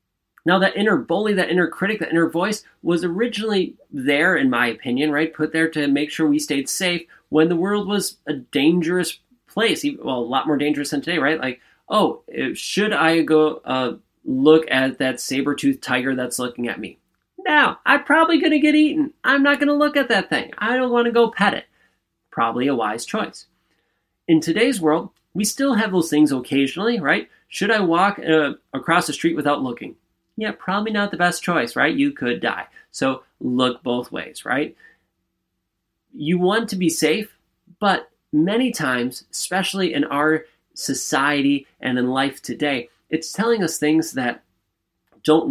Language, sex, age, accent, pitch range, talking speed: English, male, 30-49, American, 145-210 Hz, 180 wpm